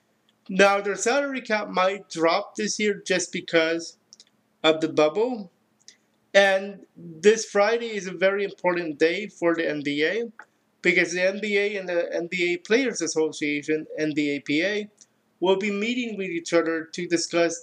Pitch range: 165-205 Hz